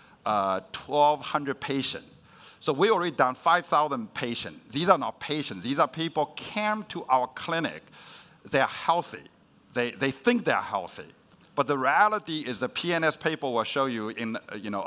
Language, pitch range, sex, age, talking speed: English, 130-175 Hz, male, 60-79, 185 wpm